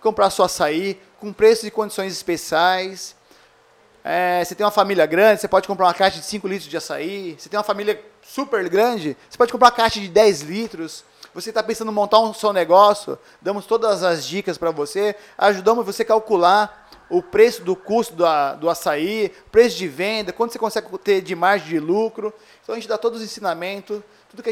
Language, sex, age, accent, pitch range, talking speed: Portuguese, male, 20-39, Brazilian, 180-215 Hz, 200 wpm